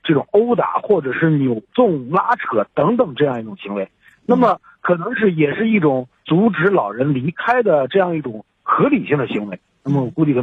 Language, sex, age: Chinese, male, 50-69